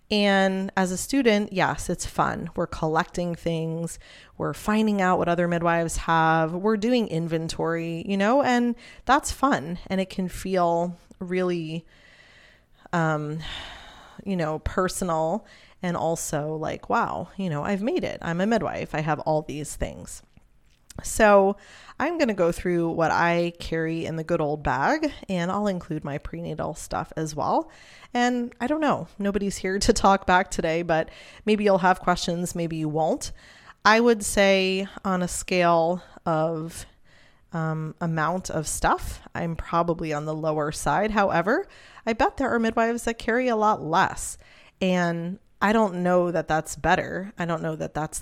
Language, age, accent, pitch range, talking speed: English, 20-39, American, 160-205 Hz, 165 wpm